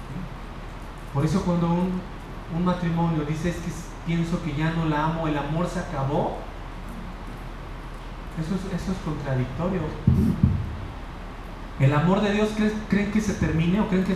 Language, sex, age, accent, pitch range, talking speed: English, male, 30-49, Mexican, 145-185 Hz, 145 wpm